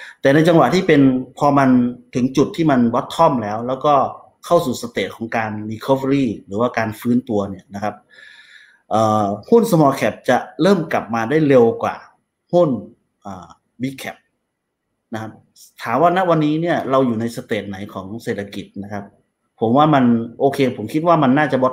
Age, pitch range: 30-49, 110-135 Hz